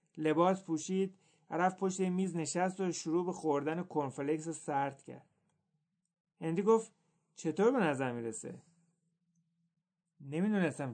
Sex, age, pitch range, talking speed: male, 30-49, 155-185 Hz, 110 wpm